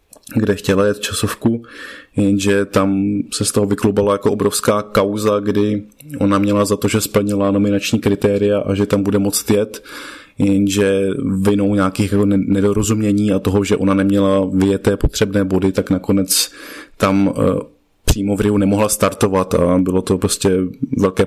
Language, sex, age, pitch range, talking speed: Slovak, male, 20-39, 95-105 Hz, 145 wpm